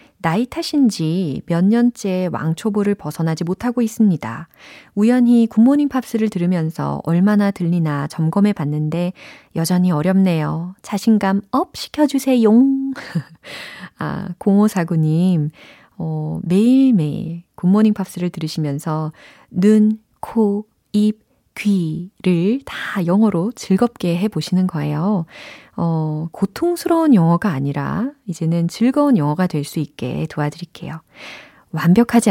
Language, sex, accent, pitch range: Korean, female, native, 160-215 Hz